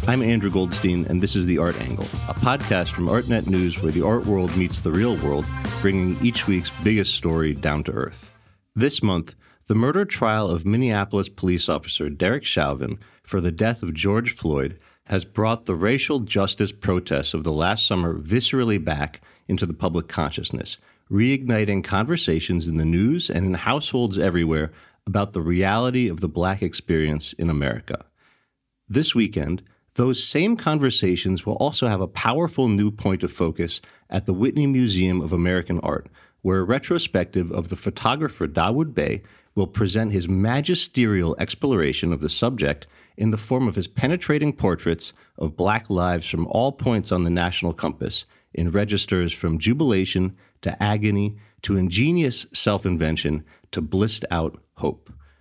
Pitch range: 85-115 Hz